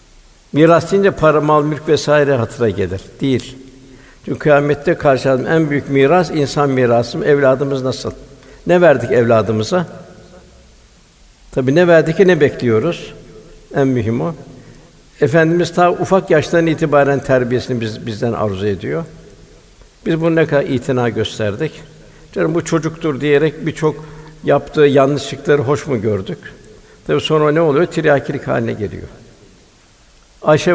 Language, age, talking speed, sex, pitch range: Turkish, 60-79, 125 wpm, male, 130-155 Hz